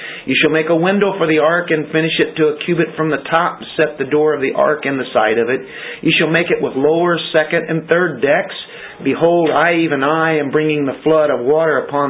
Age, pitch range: 50-69, 150-175 Hz